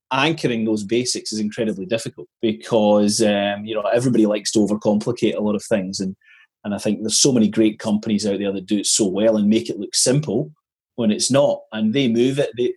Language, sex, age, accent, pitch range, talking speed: English, male, 30-49, British, 105-135 Hz, 220 wpm